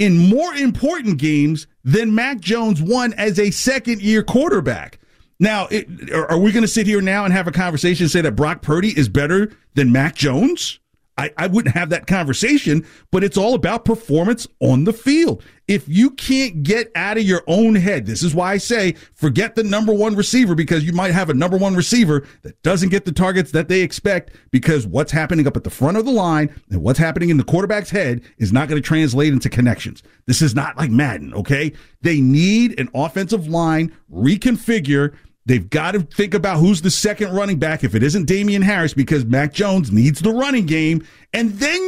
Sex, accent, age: male, American, 50-69